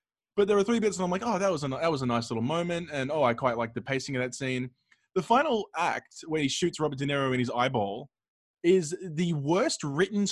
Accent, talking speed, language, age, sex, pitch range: Australian, 255 wpm, English, 20-39, male, 140-205 Hz